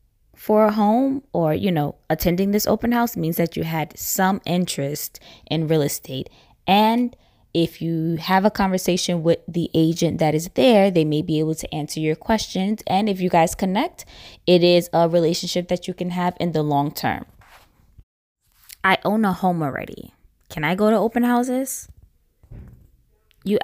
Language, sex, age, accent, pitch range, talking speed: English, female, 10-29, American, 155-195 Hz, 175 wpm